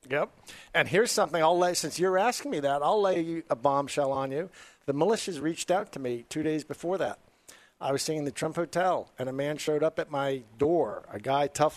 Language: English